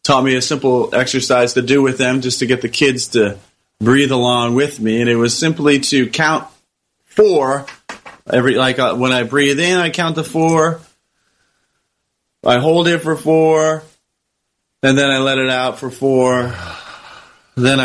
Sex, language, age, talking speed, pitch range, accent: male, English, 30-49, 170 wpm, 120-150 Hz, American